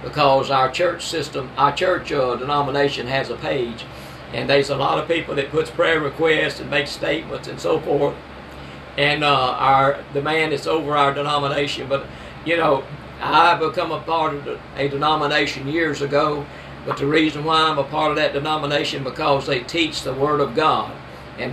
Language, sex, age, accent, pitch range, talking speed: English, male, 60-79, American, 140-160 Hz, 185 wpm